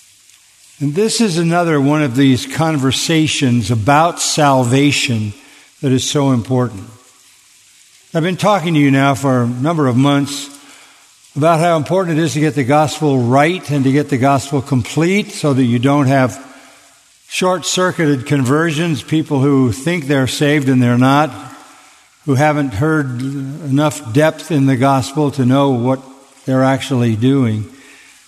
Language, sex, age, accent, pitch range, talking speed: English, male, 50-69, American, 130-150 Hz, 150 wpm